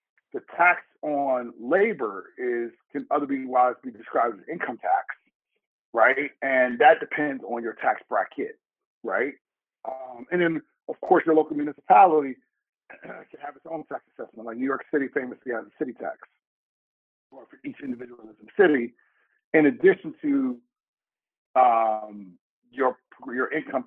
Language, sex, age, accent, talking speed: English, male, 40-59, American, 145 wpm